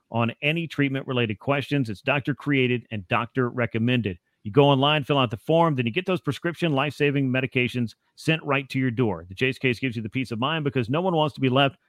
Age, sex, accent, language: 40-59, male, American, English